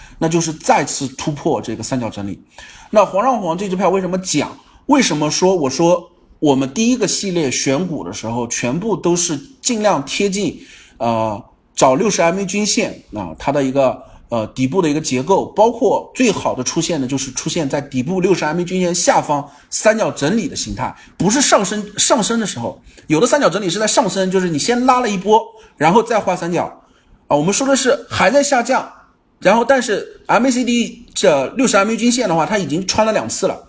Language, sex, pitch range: Chinese, male, 155-225 Hz